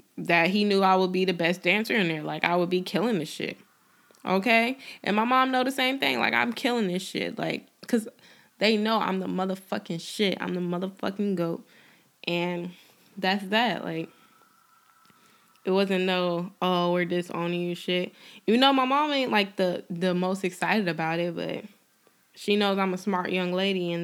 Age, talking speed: 10-29, 190 wpm